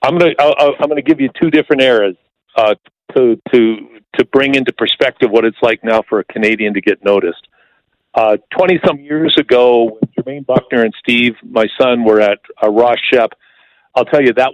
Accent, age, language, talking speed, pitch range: American, 50-69, English, 180 wpm, 120-145 Hz